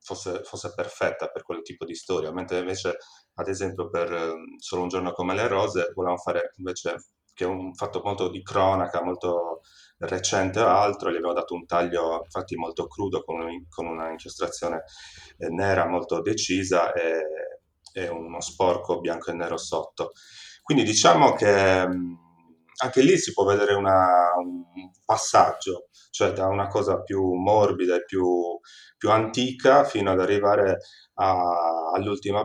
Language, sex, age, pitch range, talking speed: Italian, male, 30-49, 90-140 Hz, 155 wpm